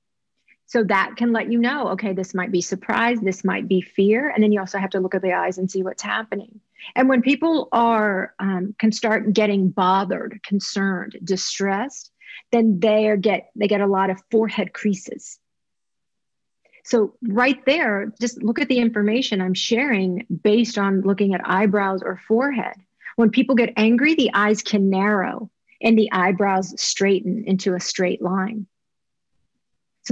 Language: English